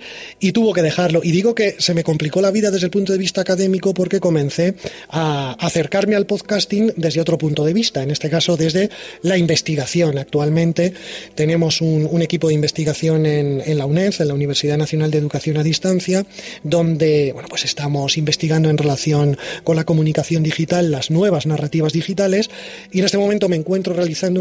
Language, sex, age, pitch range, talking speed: Spanish, male, 30-49, 155-185 Hz, 185 wpm